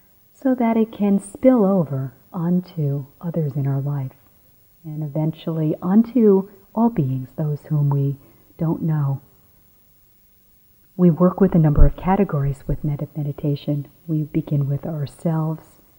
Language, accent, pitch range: English, American, 140-175 Hz